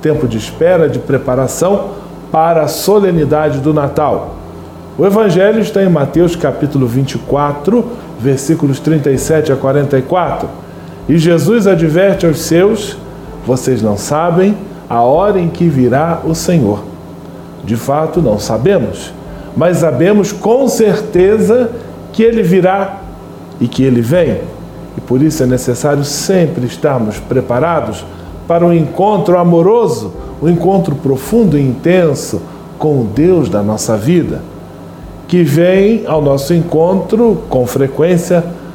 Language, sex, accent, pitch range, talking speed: Portuguese, male, Brazilian, 135-195 Hz, 125 wpm